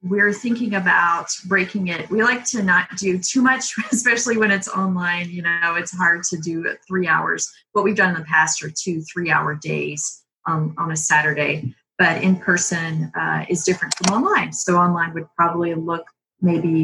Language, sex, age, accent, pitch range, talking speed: English, female, 30-49, American, 165-200 Hz, 190 wpm